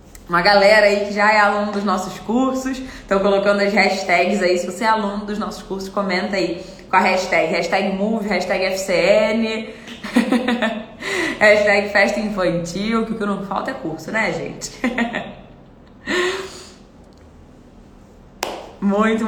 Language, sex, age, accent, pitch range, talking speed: Portuguese, female, 20-39, Brazilian, 170-210 Hz, 135 wpm